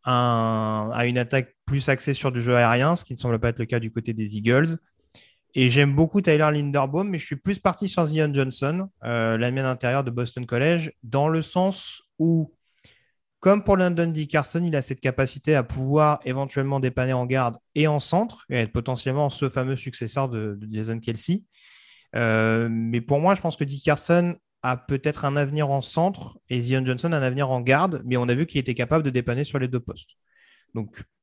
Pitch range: 125-155 Hz